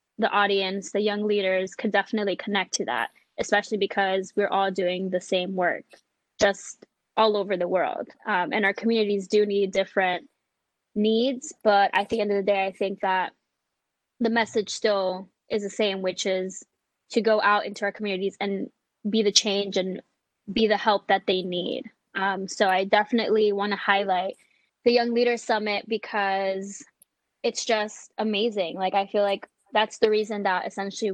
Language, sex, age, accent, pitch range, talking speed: English, female, 10-29, American, 190-215 Hz, 175 wpm